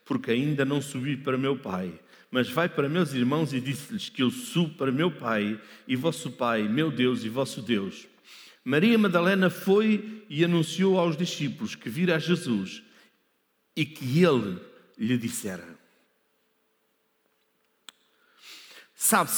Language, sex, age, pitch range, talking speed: Portuguese, male, 60-79, 155-215 Hz, 140 wpm